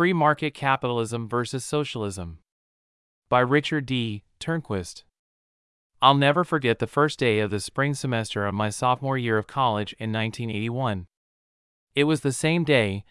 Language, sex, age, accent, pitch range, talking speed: English, male, 30-49, American, 110-135 Hz, 145 wpm